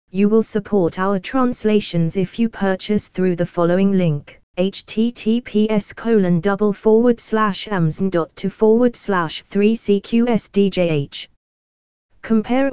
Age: 20-39